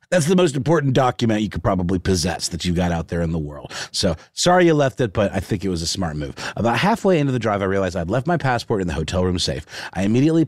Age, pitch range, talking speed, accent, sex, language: 30-49, 95-145 Hz, 275 wpm, American, male, English